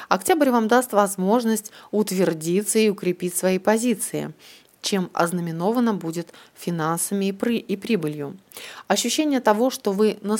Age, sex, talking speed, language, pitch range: 30-49, female, 115 wpm, Russian, 170-220 Hz